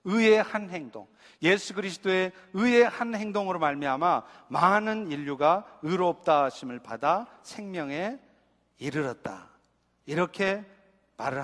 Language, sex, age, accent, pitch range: Korean, male, 40-59, native, 175-230 Hz